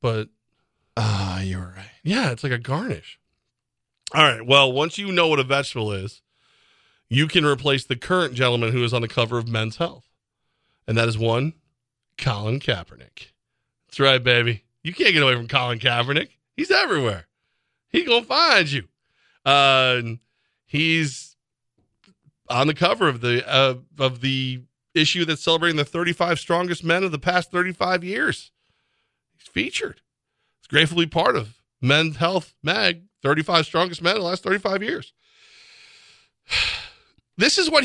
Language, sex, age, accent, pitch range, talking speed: English, male, 40-59, American, 125-185 Hz, 155 wpm